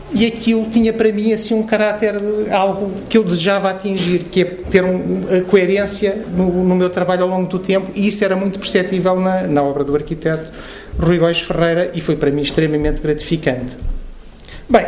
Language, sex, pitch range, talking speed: Portuguese, male, 150-190 Hz, 190 wpm